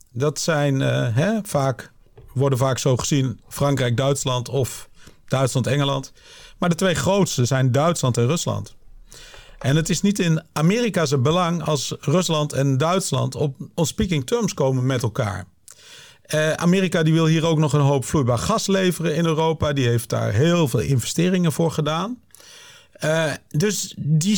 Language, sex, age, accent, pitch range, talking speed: Dutch, male, 50-69, Dutch, 130-165 Hz, 150 wpm